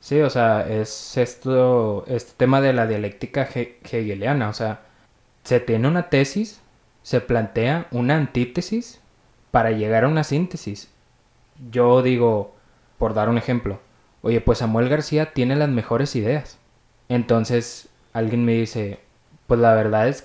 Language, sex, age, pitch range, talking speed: Spanish, male, 20-39, 110-135 Hz, 145 wpm